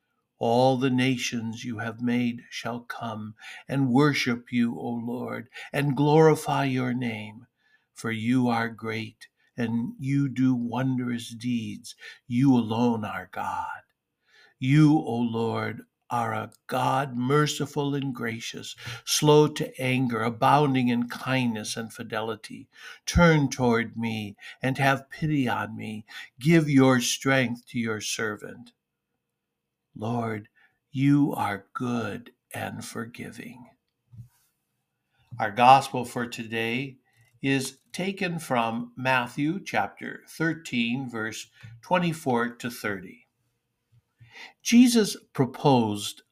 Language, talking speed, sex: English, 110 wpm, male